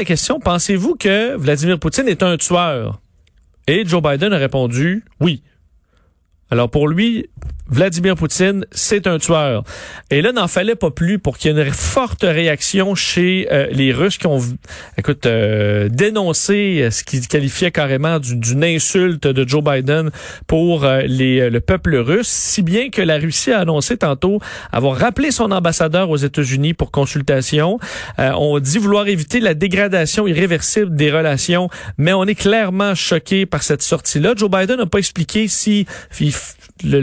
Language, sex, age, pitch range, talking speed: French, male, 40-59, 140-190 Hz, 165 wpm